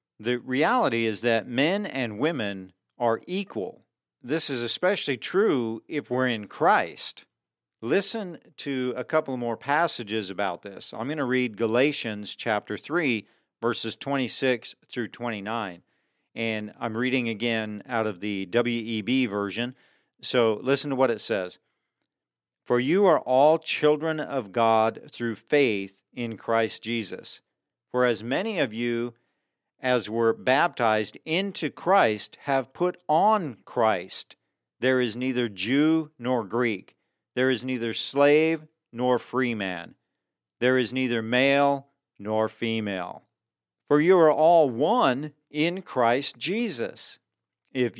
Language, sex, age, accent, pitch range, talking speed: English, male, 50-69, American, 110-140 Hz, 130 wpm